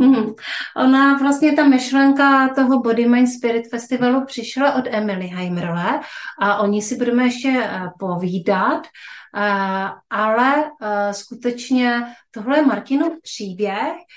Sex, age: female, 30-49